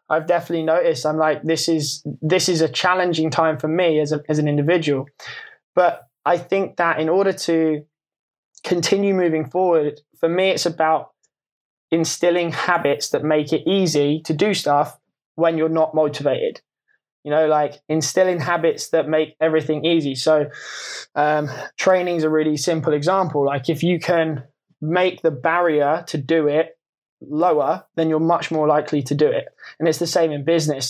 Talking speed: 170 wpm